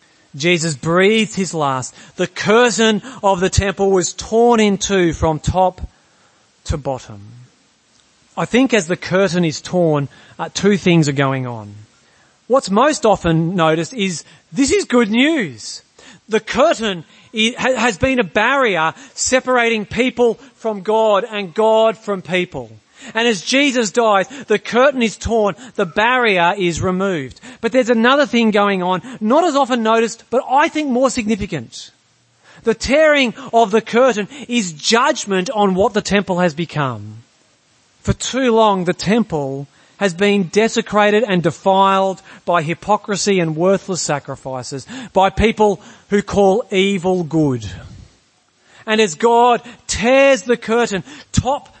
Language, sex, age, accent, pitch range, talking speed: English, male, 40-59, Australian, 170-235 Hz, 140 wpm